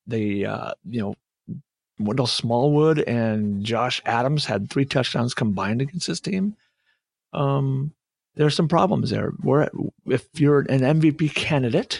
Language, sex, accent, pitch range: English, male, American, 120-160 Hz